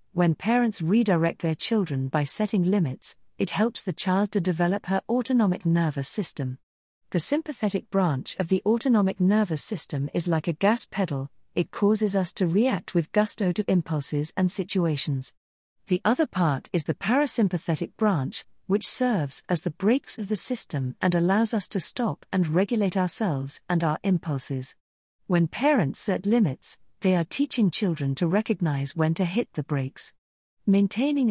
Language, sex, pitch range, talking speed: English, female, 160-205 Hz, 160 wpm